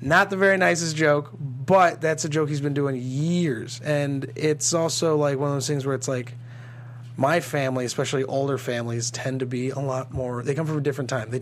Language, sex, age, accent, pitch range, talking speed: English, male, 30-49, American, 125-150 Hz, 220 wpm